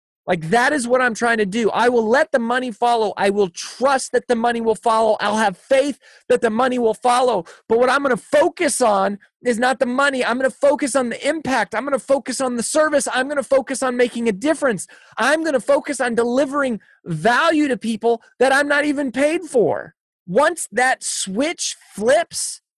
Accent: American